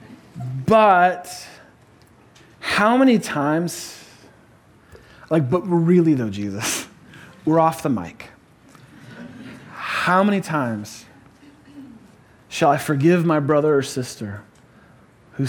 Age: 30-49